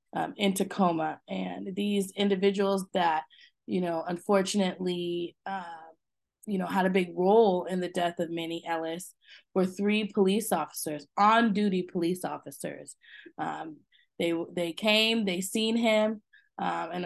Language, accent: English, American